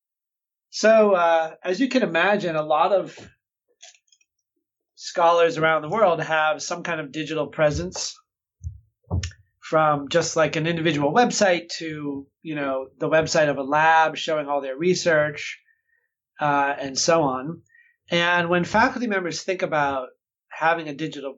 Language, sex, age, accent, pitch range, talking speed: English, male, 30-49, American, 145-180 Hz, 140 wpm